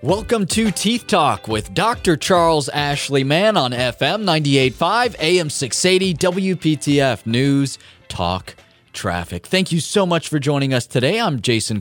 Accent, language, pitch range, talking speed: American, English, 105-150 Hz, 140 wpm